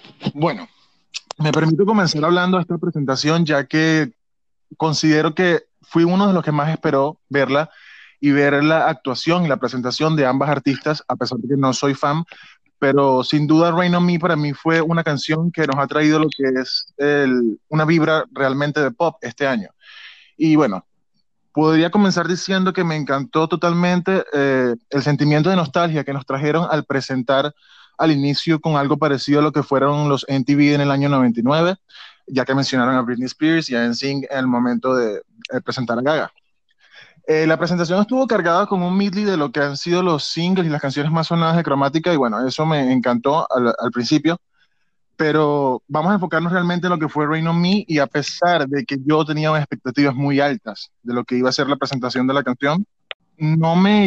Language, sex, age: Spanish, male, 20-39